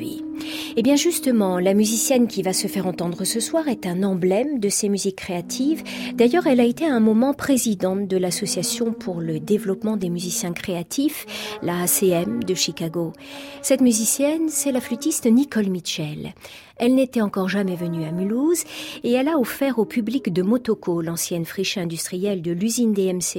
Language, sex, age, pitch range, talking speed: French, female, 40-59, 185-255 Hz, 170 wpm